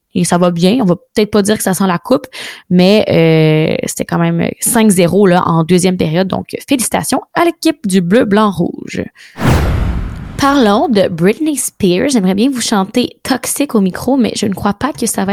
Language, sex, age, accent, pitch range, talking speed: French, female, 20-39, Canadian, 180-230 Hz, 200 wpm